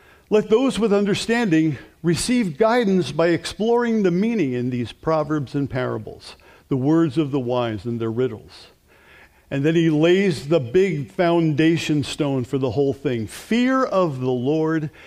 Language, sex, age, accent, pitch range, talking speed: English, male, 50-69, American, 155-210 Hz, 155 wpm